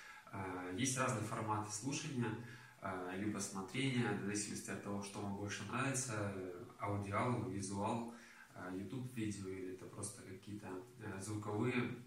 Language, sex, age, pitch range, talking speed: Russian, male, 20-39, 100-120 Hz, 115 wpm